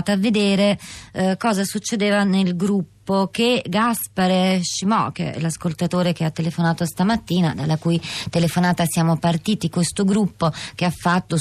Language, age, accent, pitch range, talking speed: Italian, 20-39, native, 165-190 Hz, 140 wpm